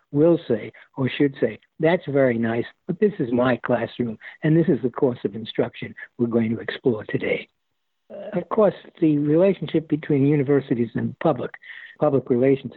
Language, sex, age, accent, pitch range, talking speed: English, male, 60-79, American, 130-160 Hz, 170 wpm